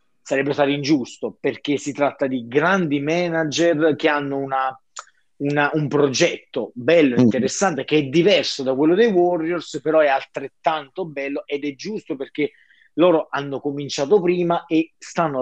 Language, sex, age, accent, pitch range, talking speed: Italian, male, 30-49, native, 145-175 Hz, 140 wpm